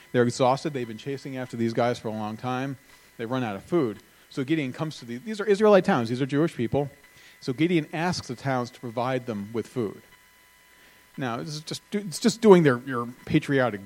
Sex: male